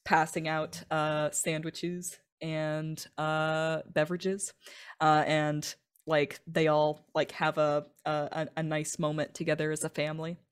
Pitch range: 155-180 Hz